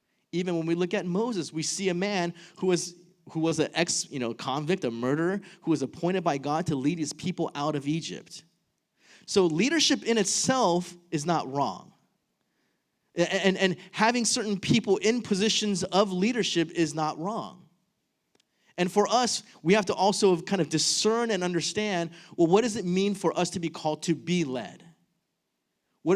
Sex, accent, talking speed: male, American, 180 wpm